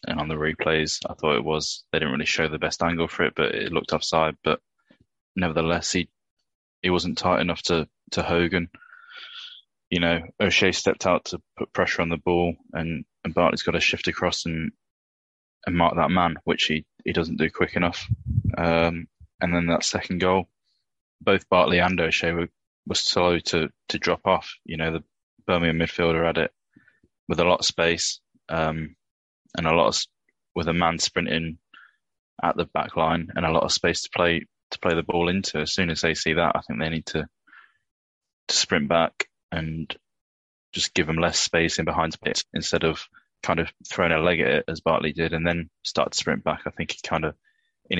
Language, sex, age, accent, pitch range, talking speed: English, male, 20-39, British, 80-90 Hz, 205 wpm